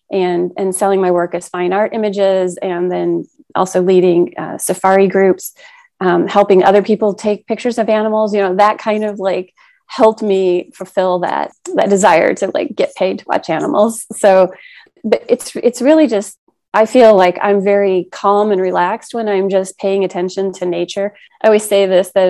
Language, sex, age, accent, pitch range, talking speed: English, female, 30-49, American, 180-210 Hz, 185 wpm